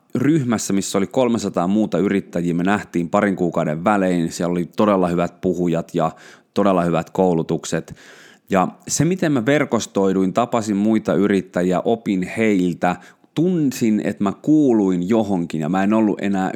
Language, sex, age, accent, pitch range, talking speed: Finnish, male, 30-49, native, 90-120 Hz, 145 wpm